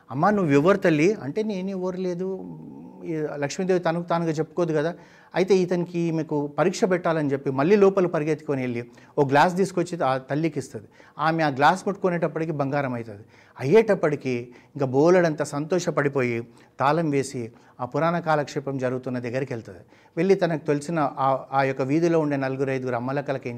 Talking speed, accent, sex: 150 wpm, native, male